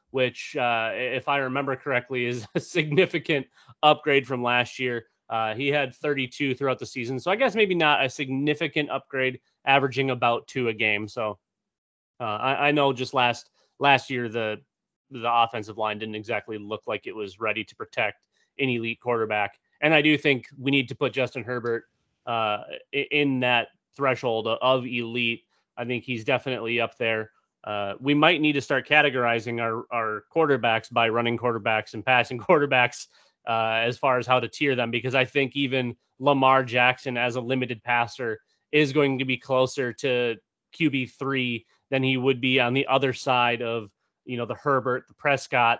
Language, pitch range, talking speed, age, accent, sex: English, 115-135 Hz, 180 wpm, 30-49, American, male